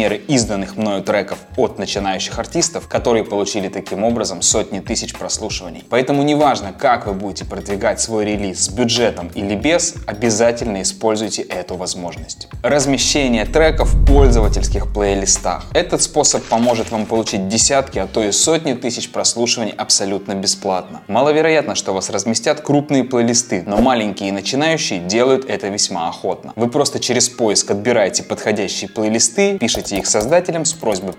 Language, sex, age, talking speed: Russian, male, 20-39, 140 wpm